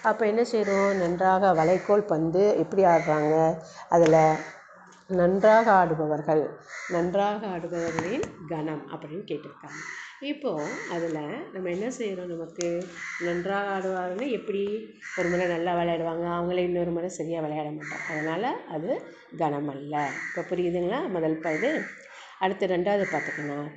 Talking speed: 115 wpm